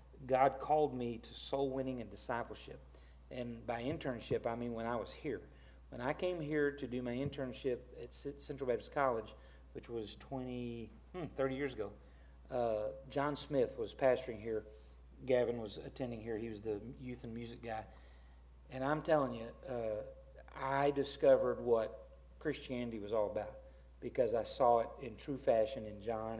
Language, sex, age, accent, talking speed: English, male, 40-59, American, 170 wpm